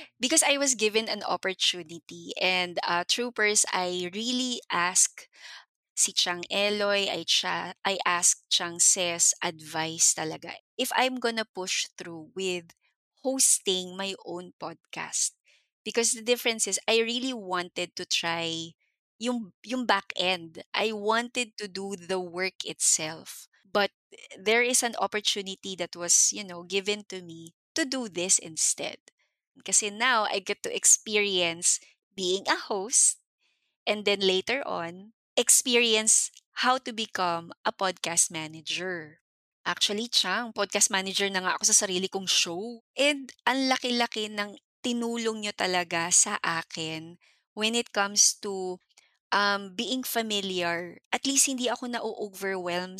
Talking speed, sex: 135 wpm, female